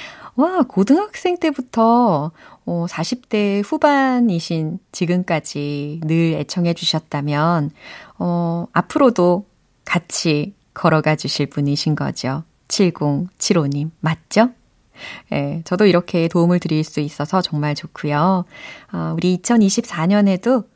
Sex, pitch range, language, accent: female, 165-260 Hz, Korean, native